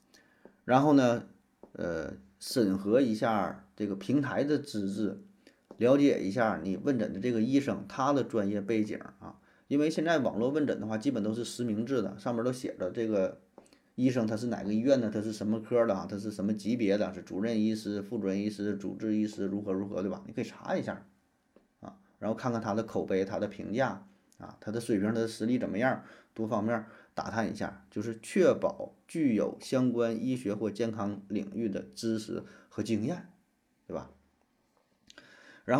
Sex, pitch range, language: male, 105-130 Hz, Chinese